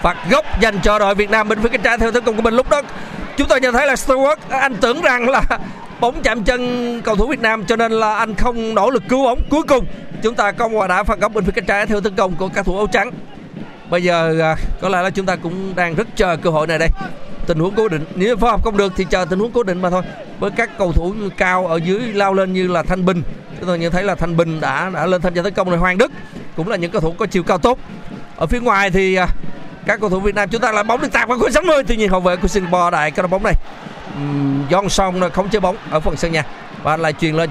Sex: male